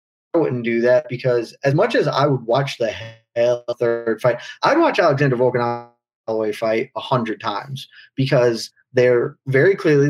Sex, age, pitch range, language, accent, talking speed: male, 20-39, 120-140 Hz, English, American, 170 wpm